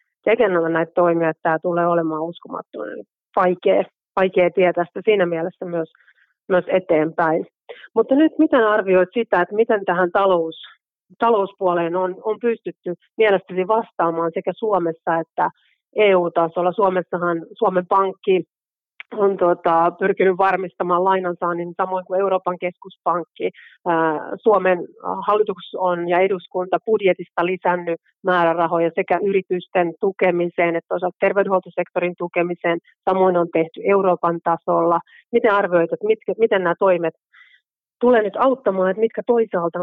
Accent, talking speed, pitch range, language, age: native, 120 wpm, 170-195 Hz, Finnish, 30-49